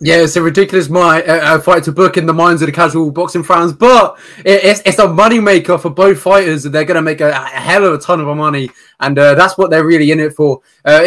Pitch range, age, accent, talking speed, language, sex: 150-180 Hz, 20-39, British, 260 wpm, English, male